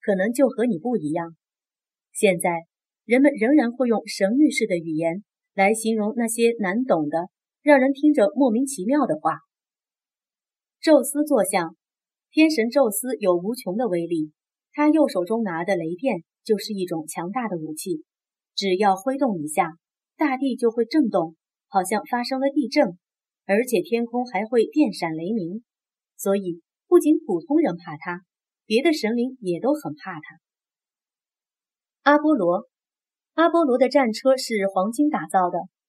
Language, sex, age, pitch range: Chinese, female, 30-49, 185-270 Hz